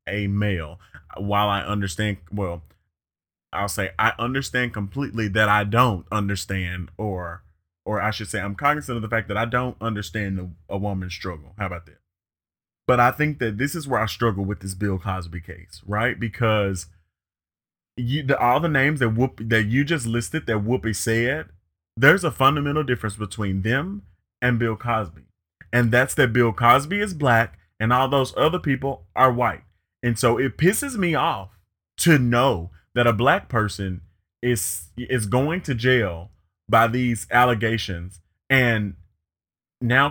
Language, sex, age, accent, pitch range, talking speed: English, male, 30-49, American, 95-130 Hz, 165 wpm